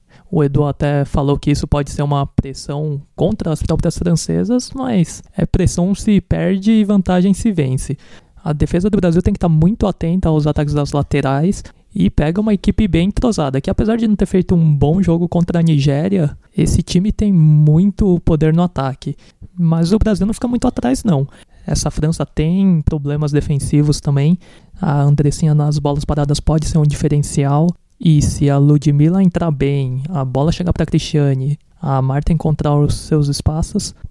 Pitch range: 145-180 Hz